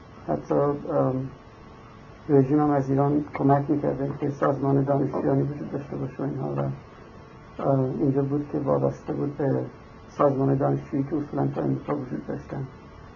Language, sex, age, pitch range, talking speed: Persian, male, 60-79, 135-150 Hz, 130 wpm